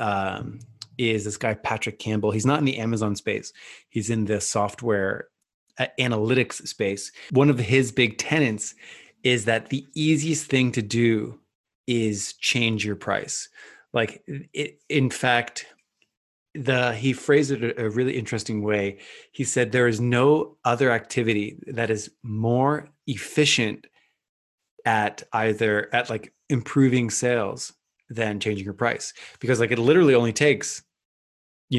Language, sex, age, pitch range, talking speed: English, male, 20-39, 105-130 Hz, 140 wpm